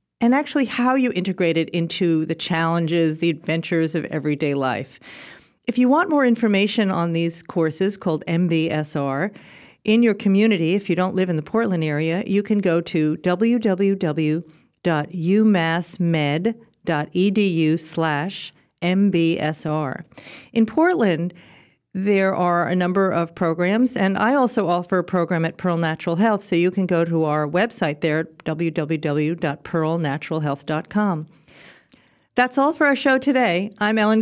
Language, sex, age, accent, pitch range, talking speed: English, female, 50-69, American, 160-205 Hz, 135 wpm